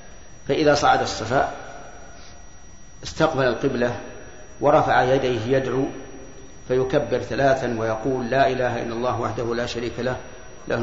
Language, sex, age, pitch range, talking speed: Arabic, male, 50-69, 120-135 Hz, 110 wpm